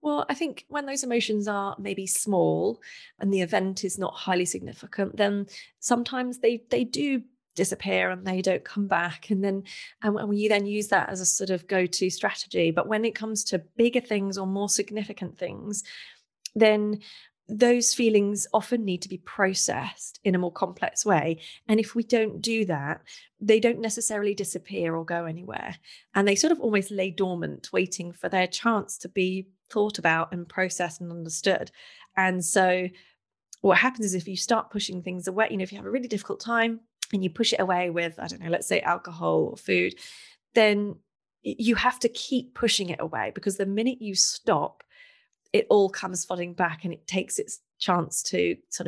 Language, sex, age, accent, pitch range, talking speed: English, female, 30-49, British, 180-220 Hz, 195 wpm